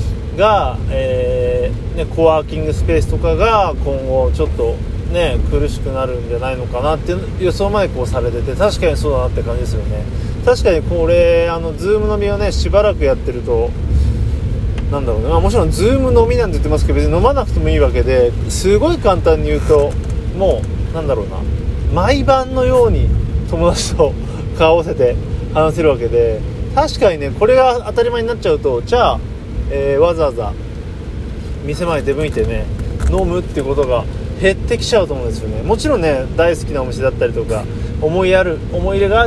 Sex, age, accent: male, 30-49, native